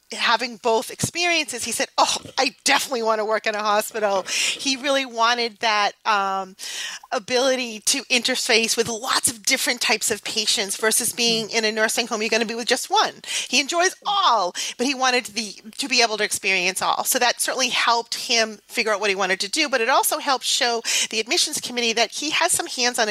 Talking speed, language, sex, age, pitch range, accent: 210 wpm, English, female, 40-59, 210-255 Hz, American